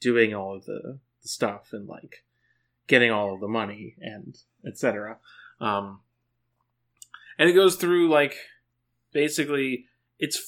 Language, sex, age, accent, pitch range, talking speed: English, male, 30-49, American, 120-150 Hz, 130 wpm